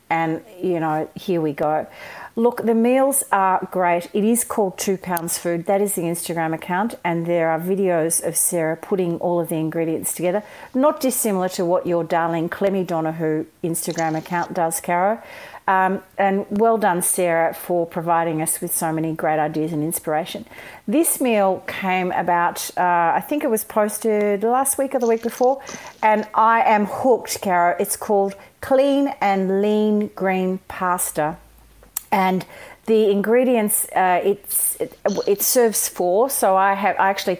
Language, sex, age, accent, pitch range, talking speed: English, female, 40-59, Australian, 170-210 Hz, 165 wpm